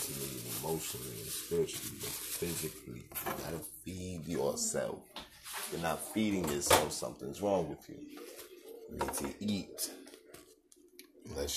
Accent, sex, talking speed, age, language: American, male, 115 wpm, 30-49, English